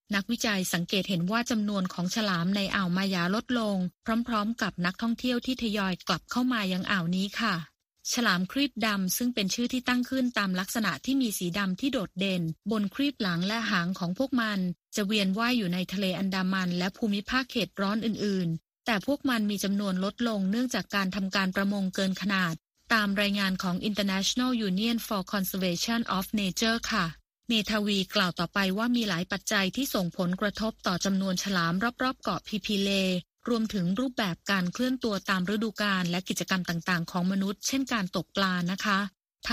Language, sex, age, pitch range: Thai, female, 20-39, 190-230 Hz